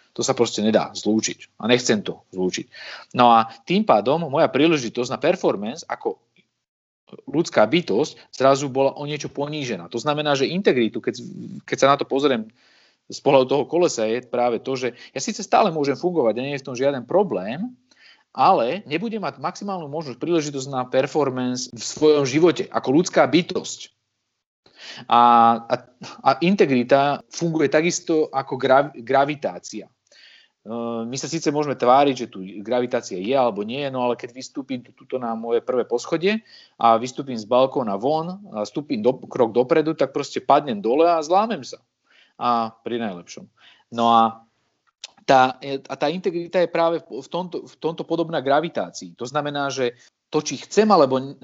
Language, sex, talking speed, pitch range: Slovak, male, 160 wpm, 120-155 Hz